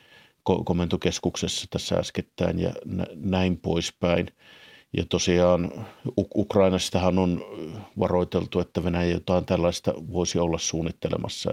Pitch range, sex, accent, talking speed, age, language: 90-95 Hz, male, native, 105 wpm, 50-69, Finnish